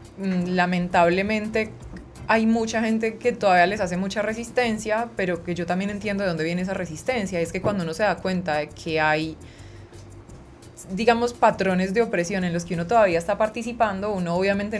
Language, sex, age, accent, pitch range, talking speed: Spanish, female, 20-39, Colombian, 175-230 Hz, 175 wpm